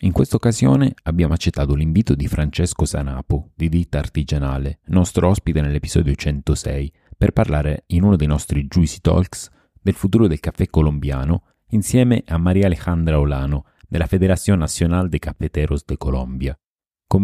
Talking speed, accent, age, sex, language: 145 wpm, native, 30-49, male, Italian